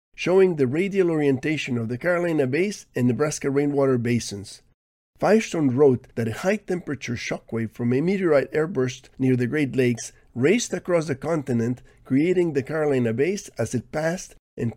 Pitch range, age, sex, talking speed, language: 120-160 Hz, 50-69, male, 160 wpm, English